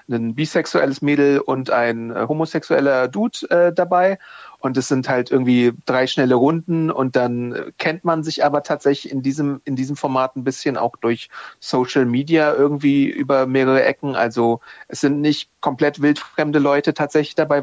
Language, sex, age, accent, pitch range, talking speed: German, male, 40-59, German, 125-150 Hz, 160 wpm